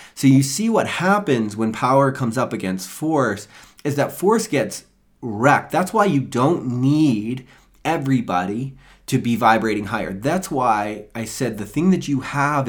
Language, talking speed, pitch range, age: English, 165 wpm, 100-130 Hz, 30-49